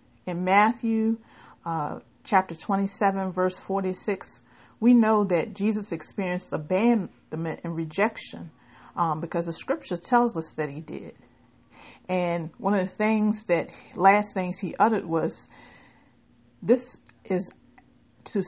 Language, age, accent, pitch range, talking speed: English, 50-69, American, 165-210 Hz, 125 wpm